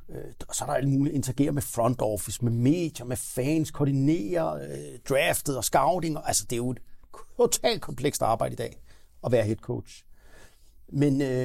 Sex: male